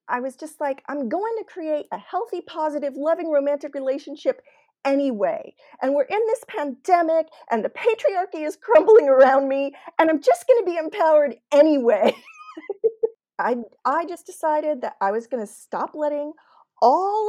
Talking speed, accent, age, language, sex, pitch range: 165 wpm, American, 40-59, English, female, 245-360 Hz